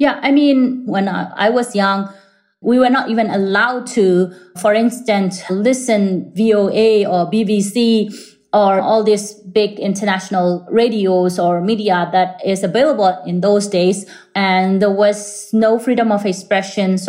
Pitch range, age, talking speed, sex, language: 185-230 Hz, 30-49, 145 wpm, female, English